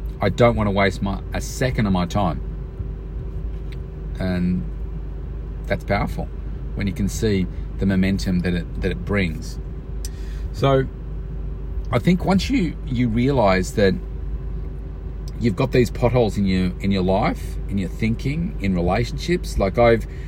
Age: 40-59